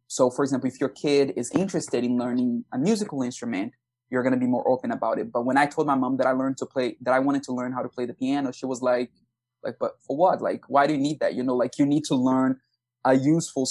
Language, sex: English, male